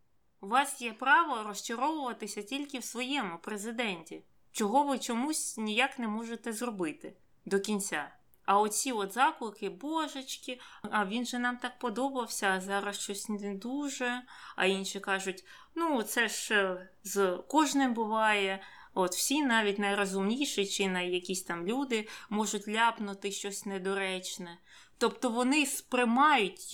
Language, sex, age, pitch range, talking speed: Ukrainian, female, 20-39, 195-250 Hz, 130 wpm